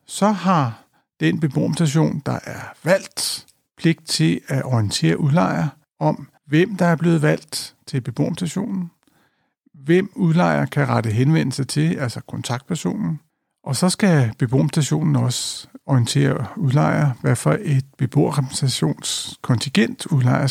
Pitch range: 130-160 Hz